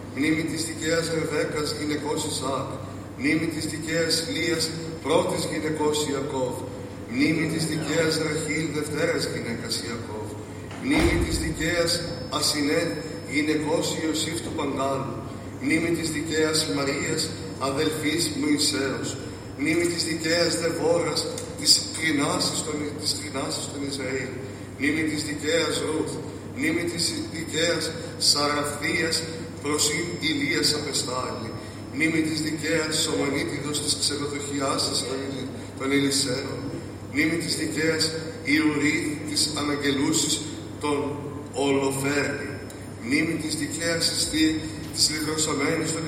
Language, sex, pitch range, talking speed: Greek, male, 135-155 Hz, 105 wpm